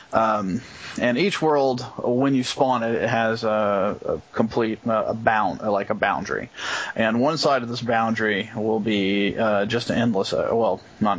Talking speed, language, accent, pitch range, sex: 175 wpm, English, American, 105-125 Hz, male